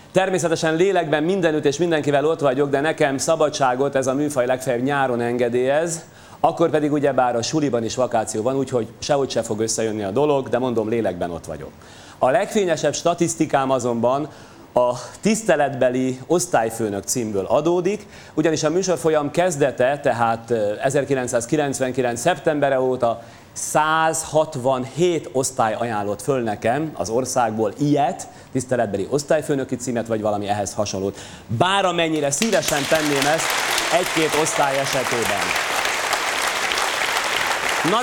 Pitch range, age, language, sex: 120-160 Hz, 30-49, Hungarian, male